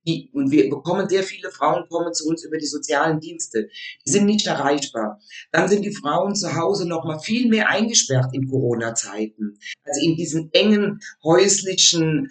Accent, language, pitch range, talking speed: German, German, 150-205 Hz, 170 wpm